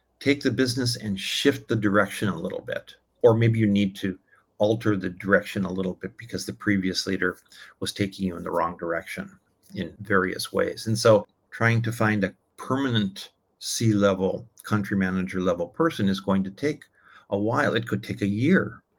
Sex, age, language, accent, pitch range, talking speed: male, 50-69, English, American, 100-120 Hz, 185 wpm